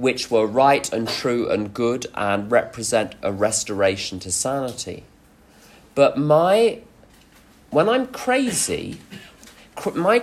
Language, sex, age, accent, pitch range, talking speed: English, male, 40-59, British, 120-170 Hz, 115 wpm